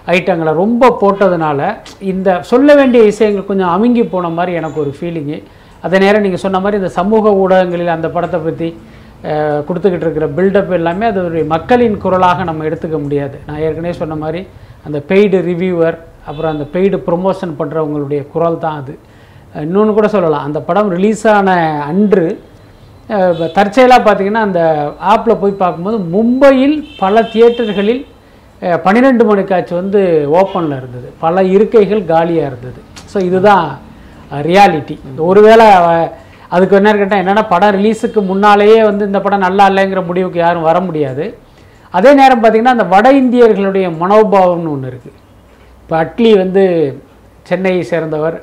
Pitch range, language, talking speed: 160-205 Hz, Tamil, 140 wpm